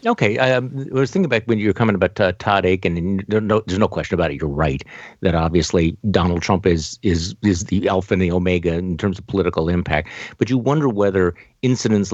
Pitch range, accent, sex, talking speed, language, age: 90-110 Hz, American, male, 230 wpm, English, 50-69